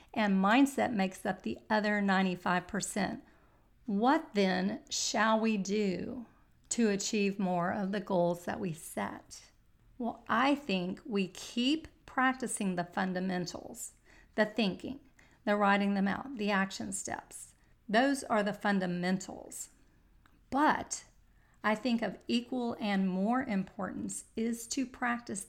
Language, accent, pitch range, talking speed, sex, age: English, American, 195-235 Hz, 125 wpm, female, 40-59